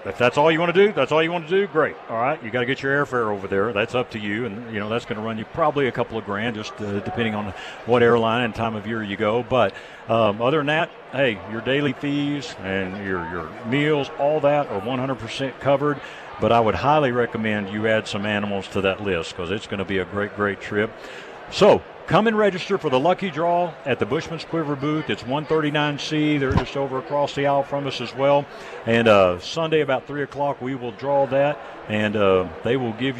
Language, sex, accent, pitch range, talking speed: English, male, American, 110-150 Hz, 240 wpm